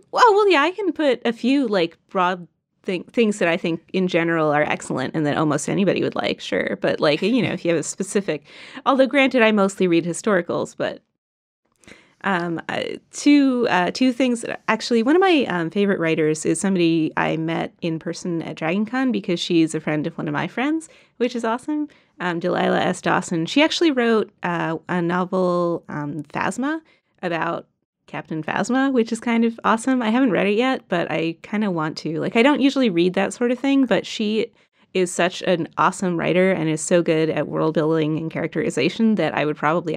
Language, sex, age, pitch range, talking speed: English, female, 30-49, 170-260 Hz, 200 wpm